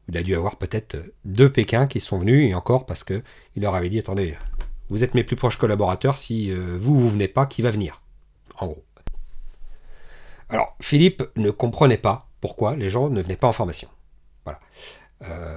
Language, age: French, 40-59